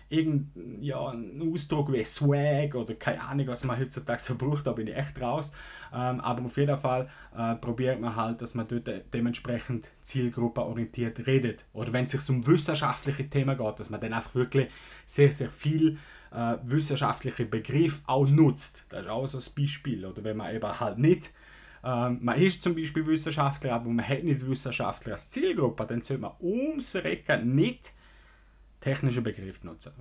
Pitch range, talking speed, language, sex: 115-145 Hz, 180 wpm, German, male